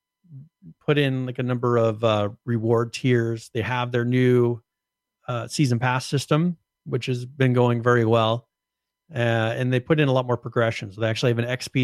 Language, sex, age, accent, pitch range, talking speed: English, male, 40-59, American, 115-130 Hz, 195 wpm